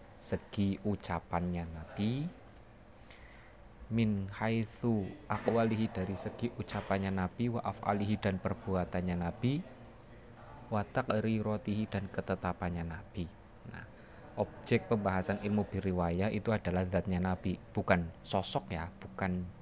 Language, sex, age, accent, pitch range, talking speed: Indonesian, male, 20-39, native, 95-115 Hz, 105 wpm